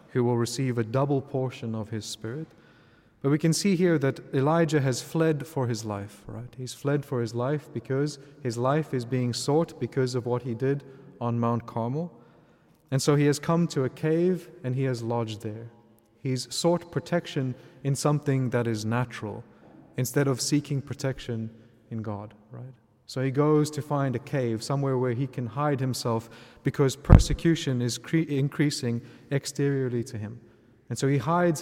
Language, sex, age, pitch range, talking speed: English, male, 30-49, 120-150 Hz, 175 wpm